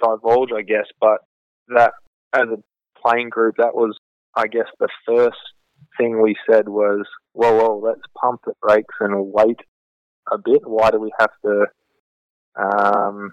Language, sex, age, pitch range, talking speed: English, male, 20-39, 100-110 Hz, 160 wpm